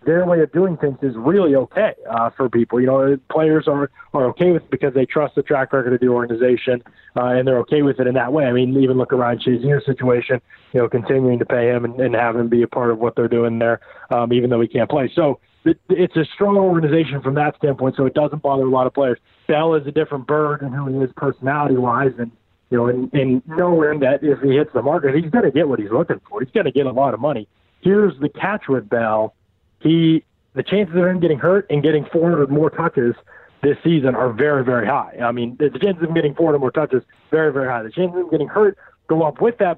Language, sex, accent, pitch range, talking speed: English, male, American, 125-155 Hz, 255 wpm